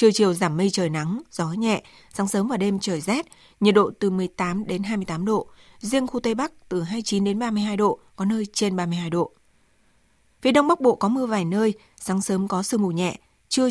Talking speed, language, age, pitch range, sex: 220 wpm, Vietnamese, 20-39, 185-225 Hz, female